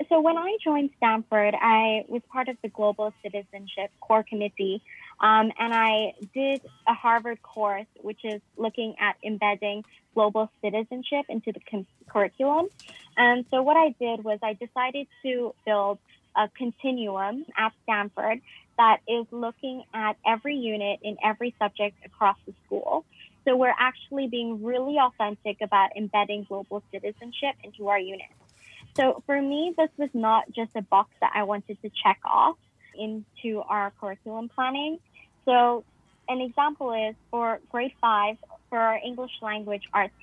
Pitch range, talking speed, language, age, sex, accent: 210-250 Hz, 150 wpm, English, 20-39, female, American